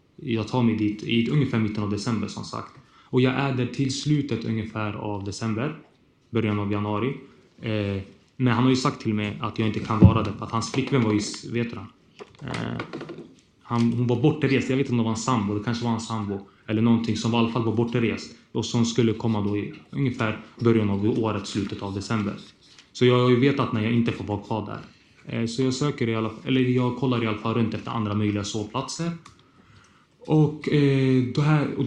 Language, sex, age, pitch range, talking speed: Swedish, male, 20-39, 105-125 Hz, 215 wpm